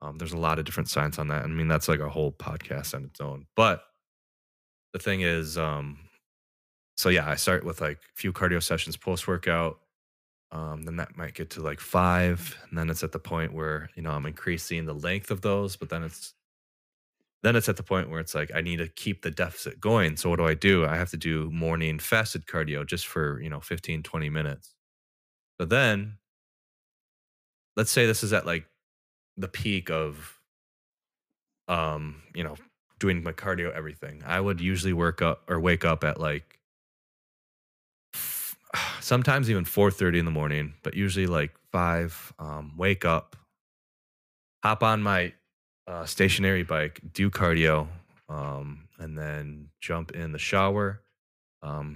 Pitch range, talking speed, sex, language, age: 75-90 Hz, 175 wpm, male, English, 10-29